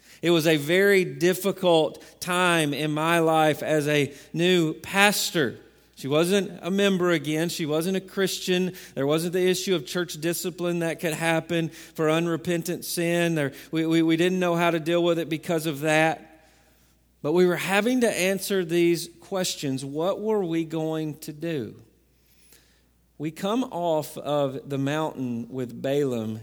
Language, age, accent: English, 40-59, American